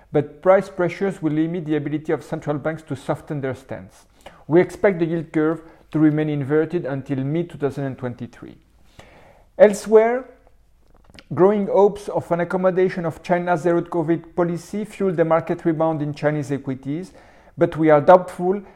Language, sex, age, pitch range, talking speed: French, male, 50-69, 150-180 Hz, 145 wpm